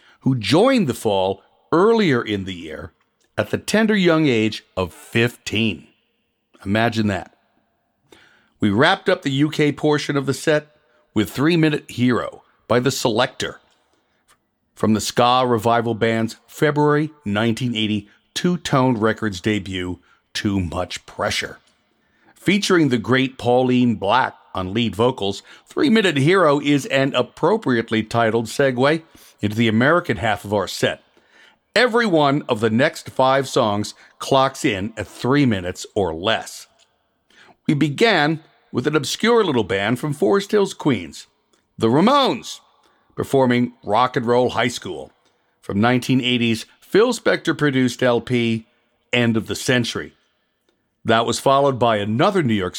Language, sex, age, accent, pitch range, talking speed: English, male, 60-79, American, 110-145 Hz, 130 wpm